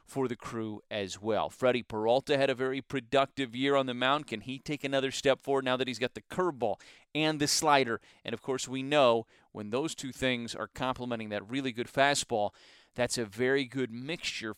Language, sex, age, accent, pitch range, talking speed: English, male, 30-49, American, 120-155 Hz, 205 wpm